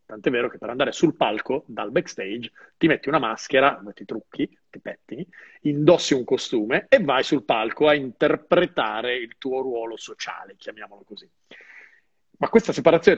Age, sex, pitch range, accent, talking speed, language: 40-59, male, 125-175 Hz, native, 160 wpm, Italian